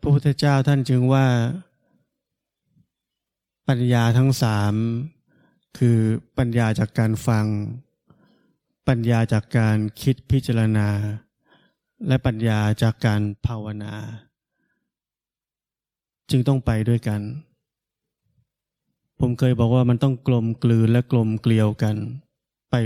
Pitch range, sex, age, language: 110-135 Hz, male, 20-39, Thai